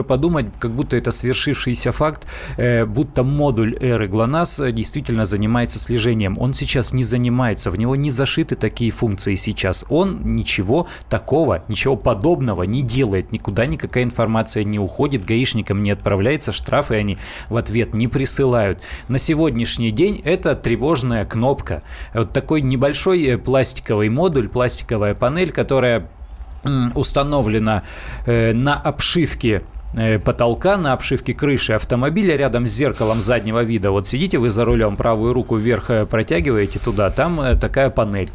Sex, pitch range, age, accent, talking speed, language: male, 110-130 Hz, 20-39, native, 135 wpm, Russian